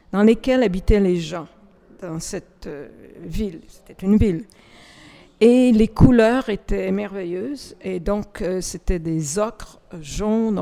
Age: 50-69